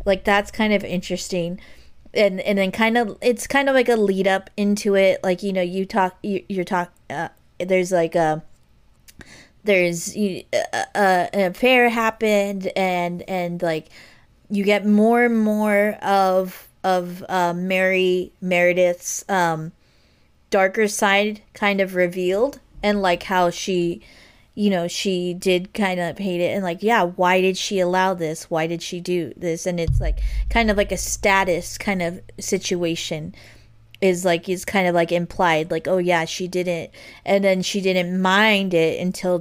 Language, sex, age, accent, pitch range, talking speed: English, female, 20-39, American, 175-195 Hz, 170 wpm